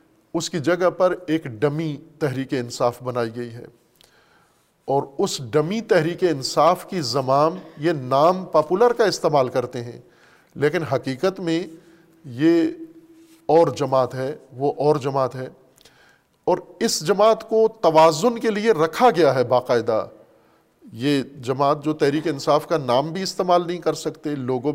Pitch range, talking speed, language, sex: 135-170 Hz, 145 wpm, Urdu, male